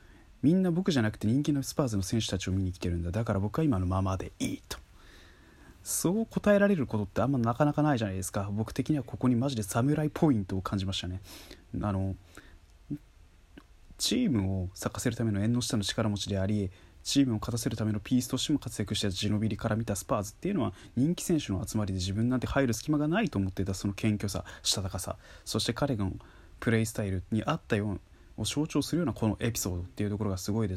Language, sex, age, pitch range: Japanese, male, 20-39, 95-125 Hz